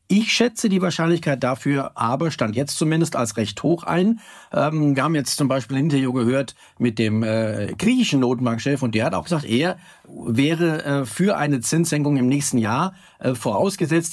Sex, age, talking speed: male, 50-69, 185 wpm